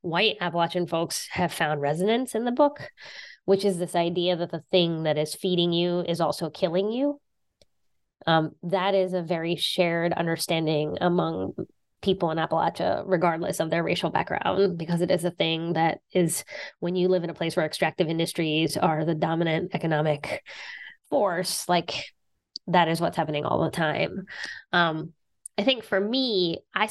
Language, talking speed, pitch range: English, 165 wpm, 165-190 Hz